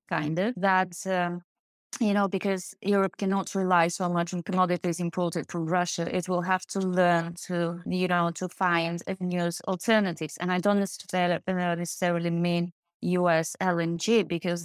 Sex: female